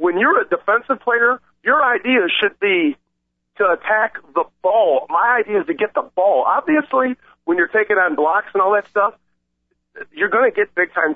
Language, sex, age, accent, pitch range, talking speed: English, male, 50-69, American, 160-215 Hz, 190 wpm